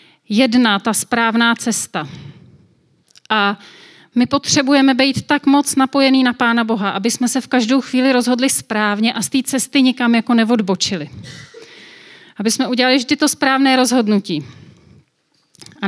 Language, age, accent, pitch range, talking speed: Czech, 30-49, native, 200-260 Hz, 140 wpm